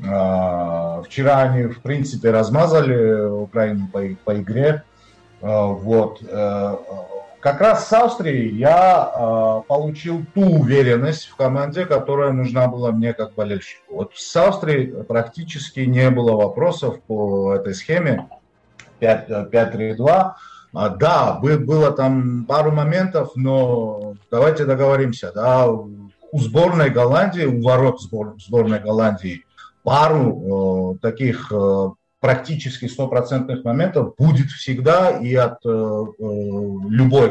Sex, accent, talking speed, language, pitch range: male, native, 105 wpm, Russian, 105-140 Hz